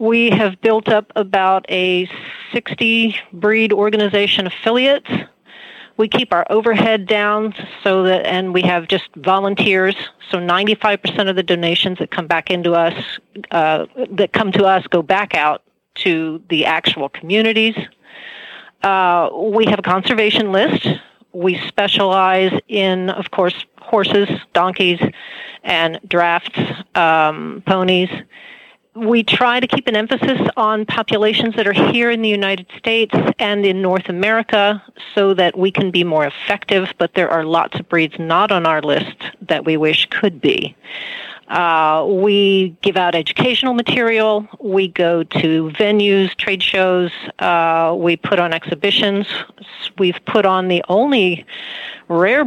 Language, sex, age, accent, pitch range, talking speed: English, female, 40-59, American, 175-215 Hz, 145 wpm